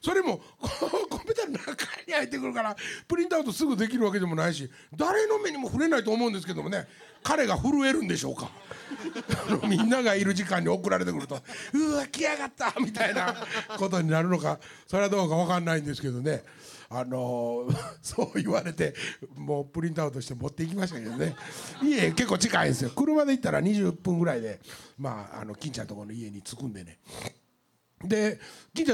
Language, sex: Japanese, male